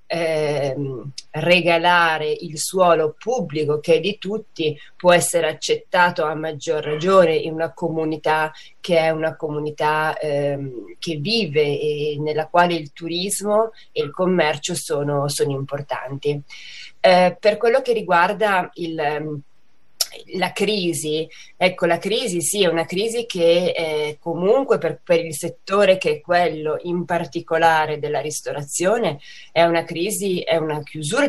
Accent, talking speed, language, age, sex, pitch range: native, 135 wpm, Italian, 20-39, female, 155-190 Hz